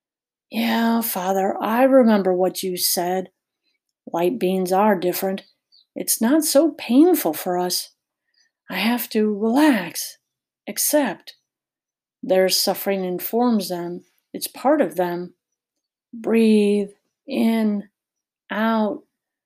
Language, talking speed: English, 100 wpm